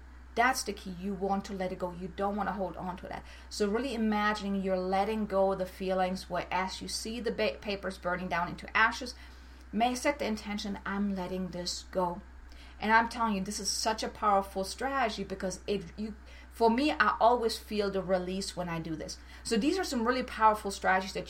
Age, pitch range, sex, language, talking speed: 30-49, 185-225 Hz, female, English, 215 wpm